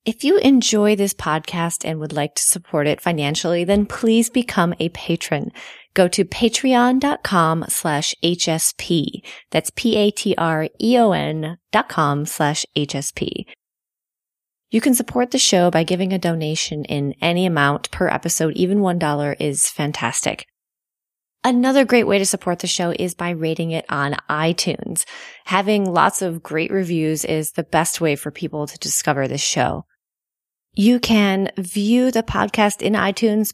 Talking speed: 145 wpm